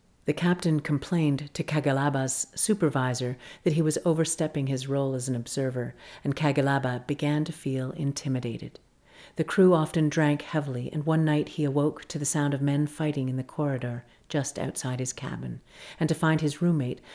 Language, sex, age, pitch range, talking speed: English, female, 50-69, 135-160 Hz, 170 wpm